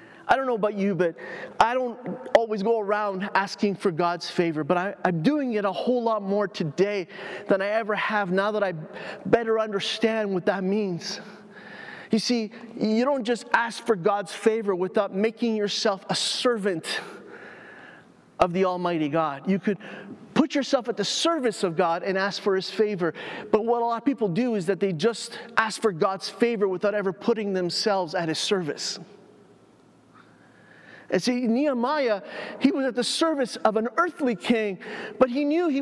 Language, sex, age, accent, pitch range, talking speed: English, male, 30-49, American, 200-260 Hz, 180 wpm